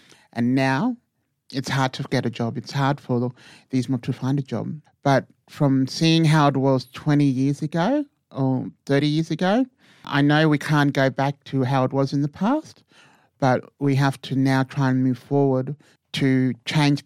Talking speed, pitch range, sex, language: 190 wpm, 130-145 Hz, male, English